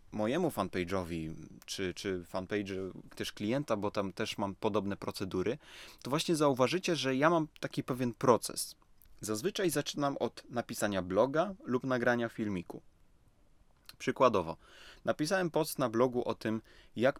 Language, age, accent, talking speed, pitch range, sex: Polish, 30-49, native, 135 wpm, 95-135 Hz, male